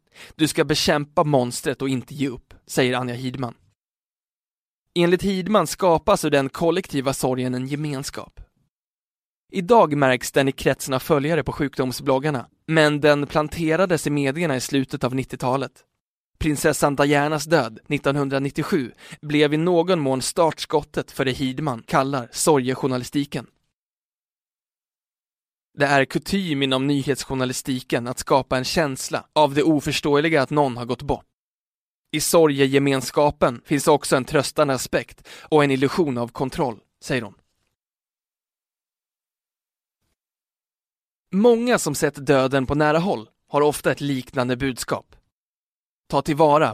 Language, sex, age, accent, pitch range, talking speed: Swedish, male, 20-39, native, 130-155 Hz, 125 wpm